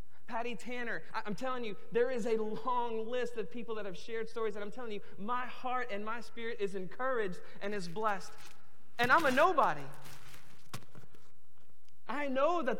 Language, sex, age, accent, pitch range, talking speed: English, male, 30-49, American, 155-225 Hz, 175 wpm